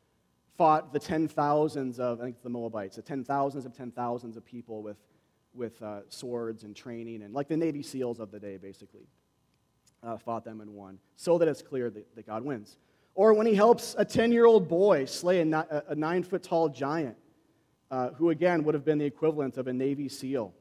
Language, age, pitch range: English, 30-49, 120-175 Hz